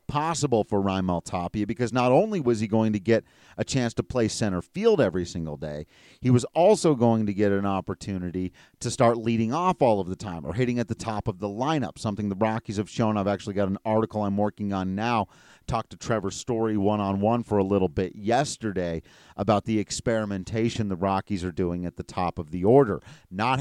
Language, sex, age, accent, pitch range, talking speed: English, male, 40-59, American, 100-130 Hz, 210 wpm